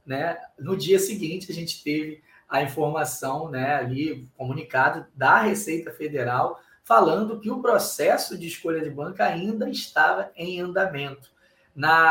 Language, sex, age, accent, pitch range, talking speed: Portuguese, male, 20-39, Brazilian, 145-190 Hz, 135 wpm